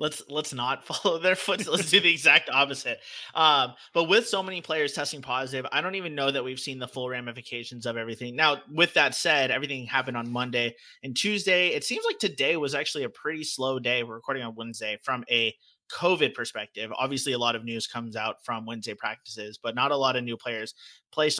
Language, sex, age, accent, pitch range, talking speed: English, male, 30-49, American, 120-140 Hz, 220 wpm